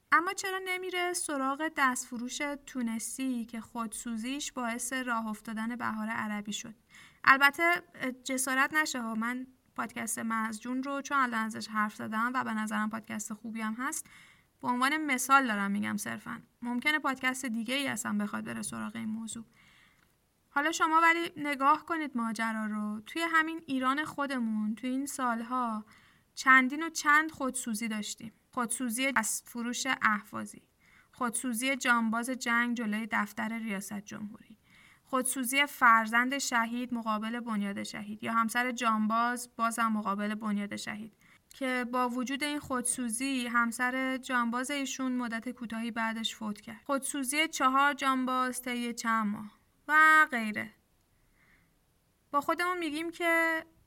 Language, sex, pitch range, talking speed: Persian, female, 225-275 Hz, 130 wpm